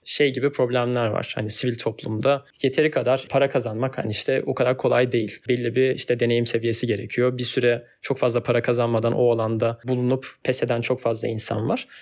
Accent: native